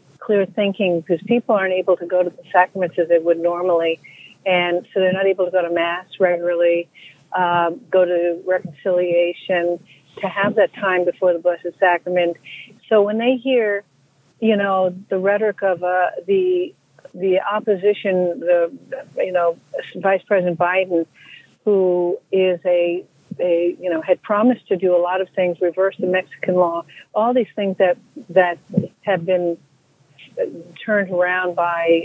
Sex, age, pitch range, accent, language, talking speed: female, 50-69, 175-195 Hz, American, English, 155 wpm